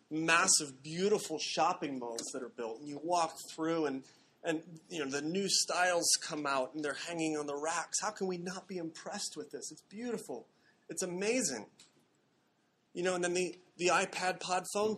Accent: American